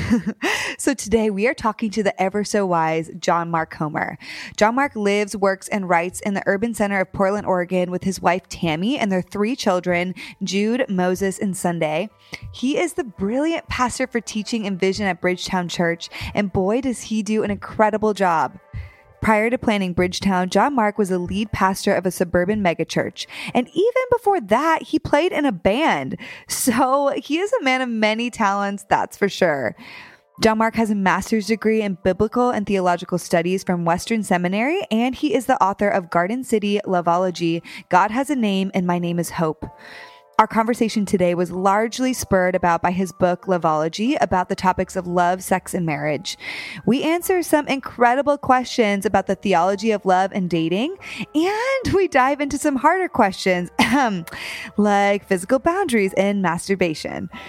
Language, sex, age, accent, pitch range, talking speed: English, female, 20-39, American, 185-245 Hz, 170 wpm